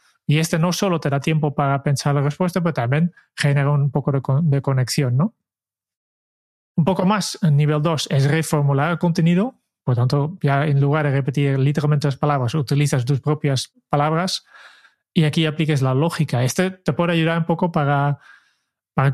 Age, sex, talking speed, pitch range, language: 20-39, male, 180 wpm, 140-165 Hz, Spanish